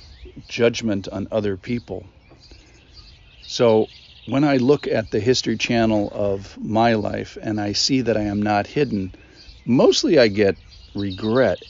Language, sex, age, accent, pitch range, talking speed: English, male, 50-69, American, 95-115 Hz, 140 wpm